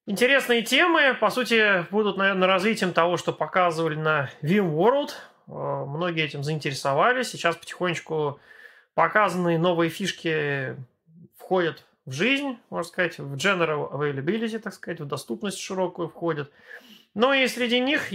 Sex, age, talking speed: male, 30-49, 130 wpm